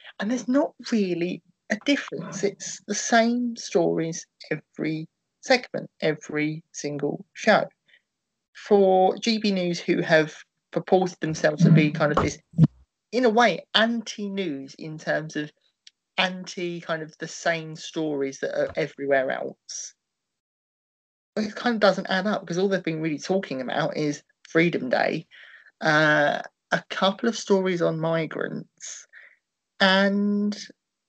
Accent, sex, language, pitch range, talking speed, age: British, male, English, 160-205 Hz, 130 wpm, 30-49